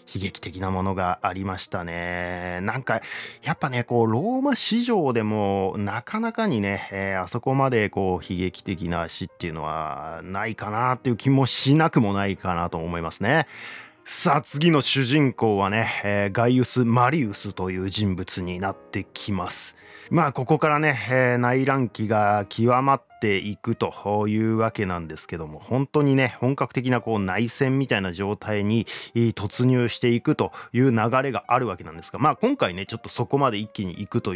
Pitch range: 95-125 Hz